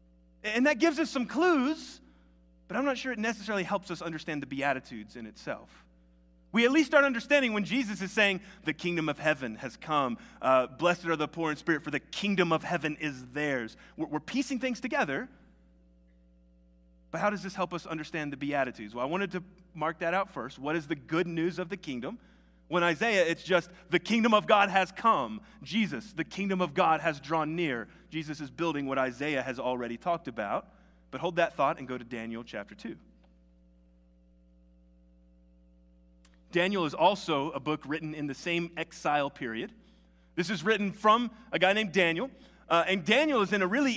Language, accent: English, American